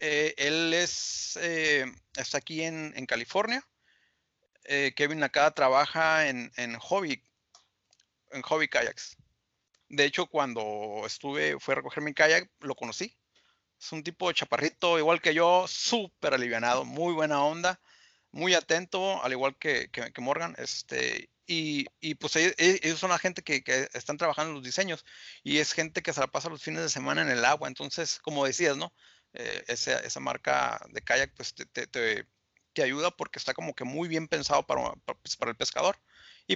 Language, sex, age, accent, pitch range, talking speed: English, male, 40-59, Mexican, 135-170 Hz, 180 wpm